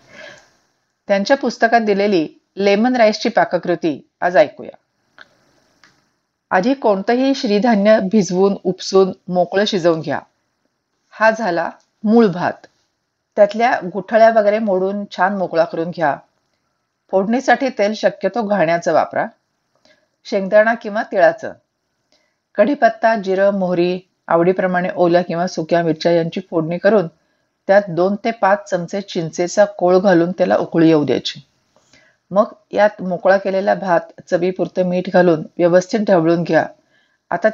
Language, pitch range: Marathi, 175-215 Hz